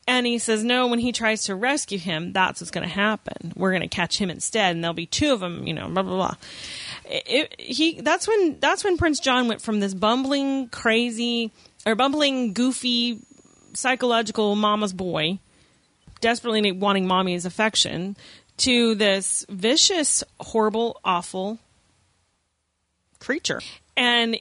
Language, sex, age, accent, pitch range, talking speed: English, female, 30-49, American, 180-235 Hz, 155 wpm